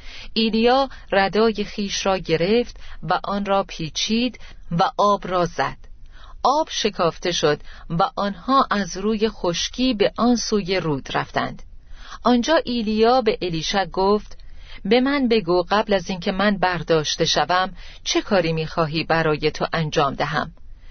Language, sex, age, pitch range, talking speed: Persian, female, 40-59, 165-225 Hz, 135 wpm